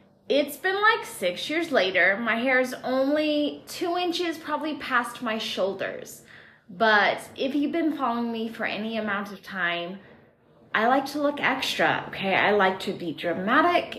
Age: 20-39